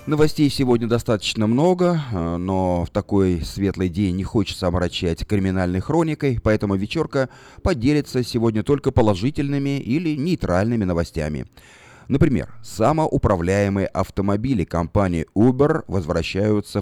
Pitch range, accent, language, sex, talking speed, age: 95-130 Hz, native, Russian, male, 105 wpm, 30-49